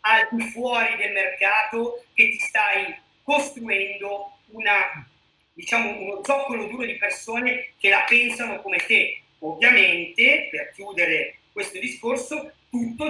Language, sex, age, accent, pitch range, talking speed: Italian, male, 40-59, native, 210-280 Hz, 125 wpm